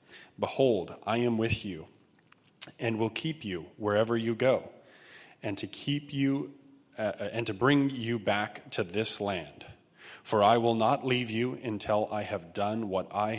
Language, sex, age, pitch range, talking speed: English, male, 30-49, 100-125 Hz, 165 wpm